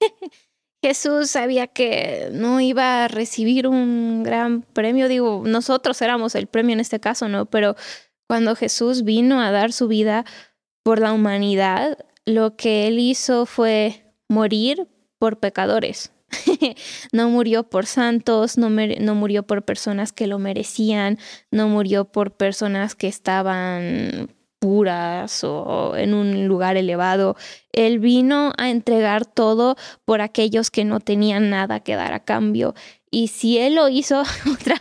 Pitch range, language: 210-250 Hz, Spanish